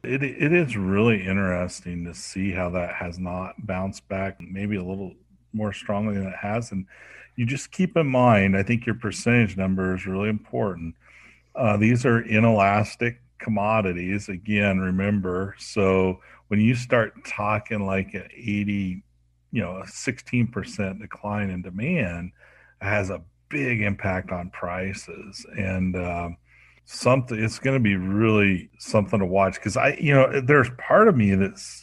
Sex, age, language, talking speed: male, 40-59, English, 160 wpm